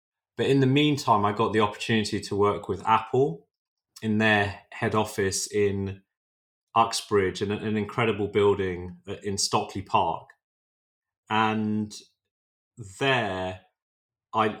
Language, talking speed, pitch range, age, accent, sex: English, 115 wpm, 100-110 Hz, 30-49, British, male